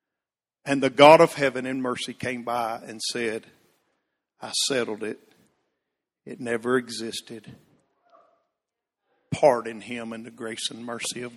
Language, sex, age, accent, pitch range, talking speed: English, male, 50-69, American, 125-160 Hz, 130 wpm